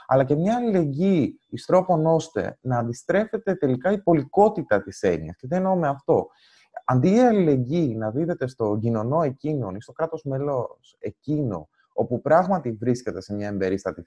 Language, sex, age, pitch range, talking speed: Greek, male, 20-39, 120-185 Hz, 160 wpm